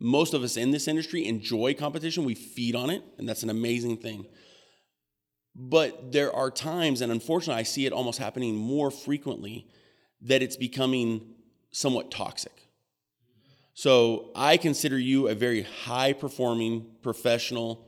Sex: male